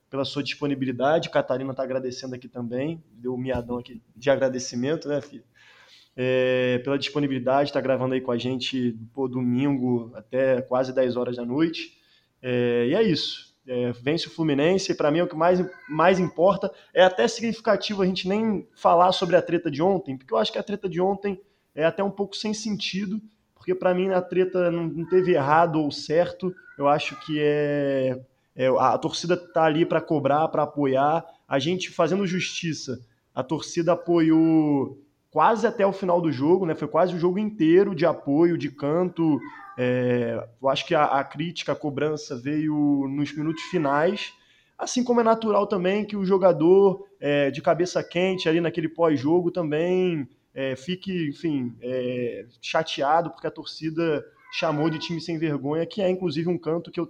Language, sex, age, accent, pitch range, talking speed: Portuguese, male, 20-39, Brazilian, 135-180 Hz, 180 wpm